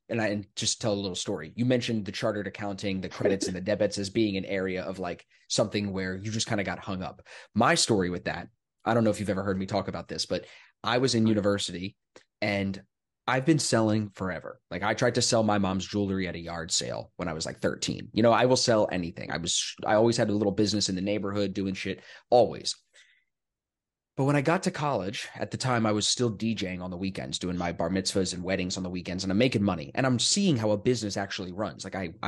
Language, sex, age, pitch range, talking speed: English, male, 20-39, 95-115 Hz, 250 wpm